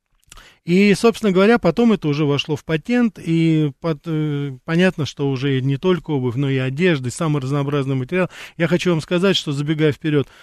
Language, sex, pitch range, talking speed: Russian, male, 135-170 Hz, 180 wpm